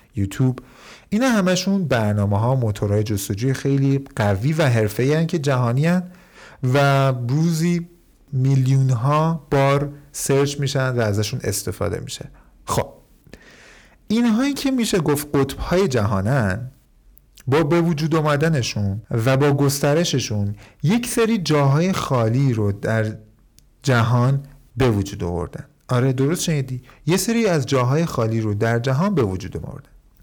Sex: male